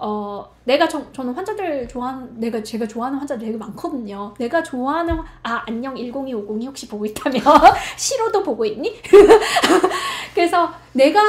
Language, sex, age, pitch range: Korean, female, 20-39, 230-350 Hz